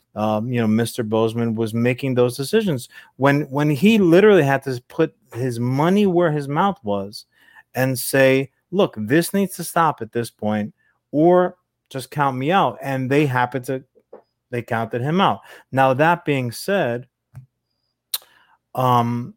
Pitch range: 120-160 Hz